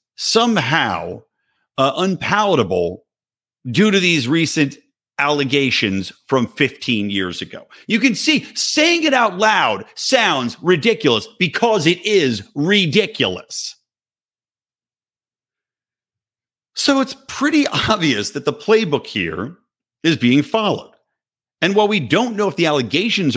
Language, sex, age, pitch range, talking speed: English, male, 50-69, 155-225 Hz, 115 wpm